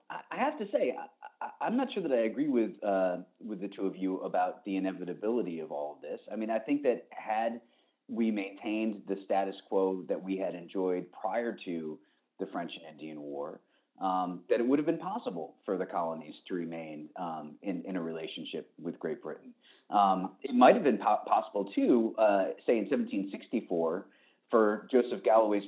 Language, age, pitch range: English, 30-49, 90-110 Hz